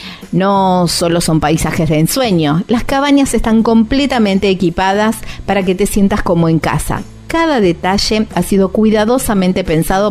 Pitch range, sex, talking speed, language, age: 160-225 Hz, female, 145 wpm, Spanish, 40-59